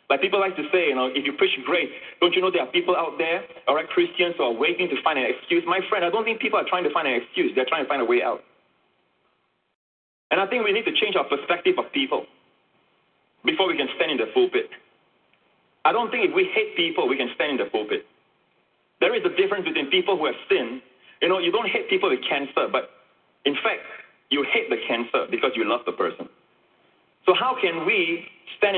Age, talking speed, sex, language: 30-49, 235 wpm, male, English